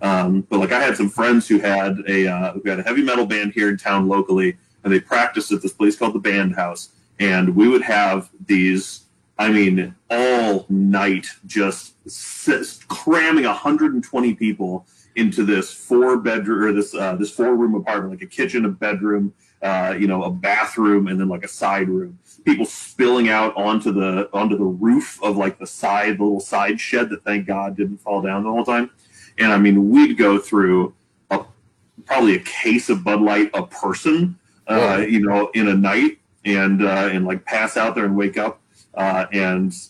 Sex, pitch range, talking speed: male, 95-110 Hz, 195 wpm